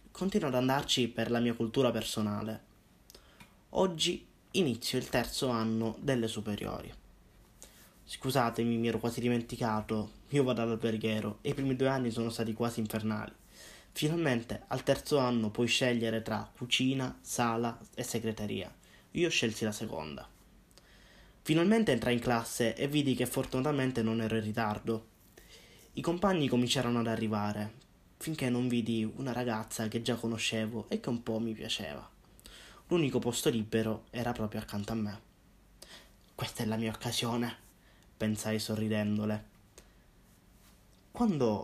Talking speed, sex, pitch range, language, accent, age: 135 wpm, male, 110-125 Hz, Italian, native, 20-39